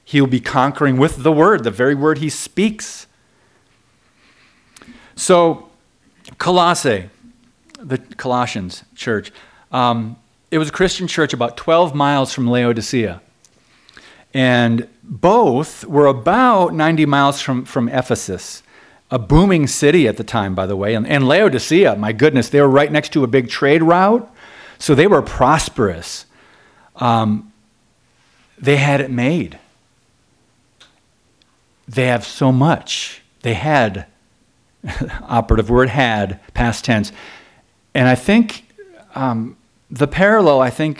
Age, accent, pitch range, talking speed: 40-59, American, 115-145 Hz, 125 wpm